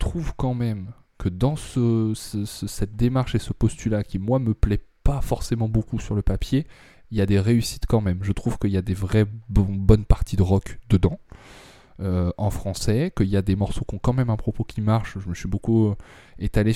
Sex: male